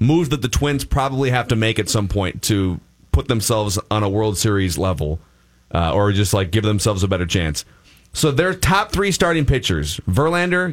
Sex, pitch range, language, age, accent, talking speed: male, 95-125 Hz, English, 30-49, American, 195 wpm